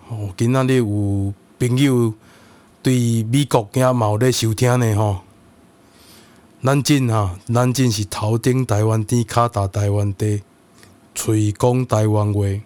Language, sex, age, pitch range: Chinese, male, 20-39, 105-125 Hz